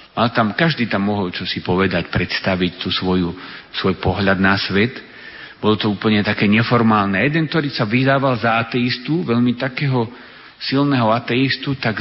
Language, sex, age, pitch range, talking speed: Slovak, male, 50-69, 110-140 Hz, 150 wpm